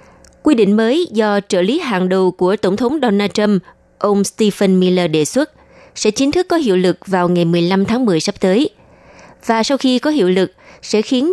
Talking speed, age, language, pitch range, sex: 205 wpm, 20-39, Vietnamese, 180-230 Hz, female